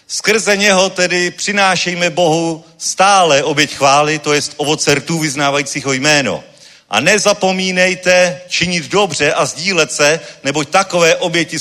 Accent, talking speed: native, 125 wpm